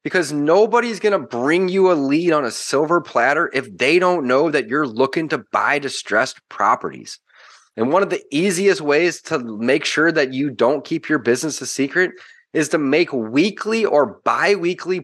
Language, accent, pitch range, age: English, American, 165-225 Hz, 30-49